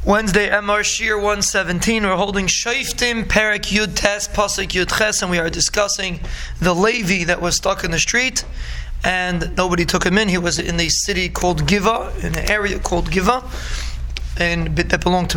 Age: 20-39